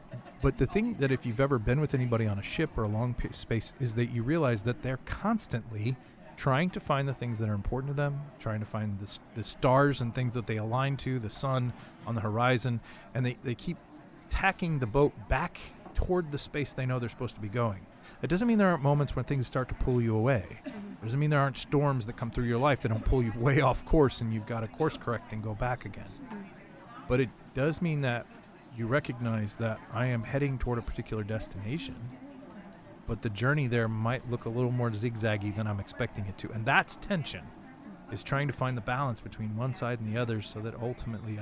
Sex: male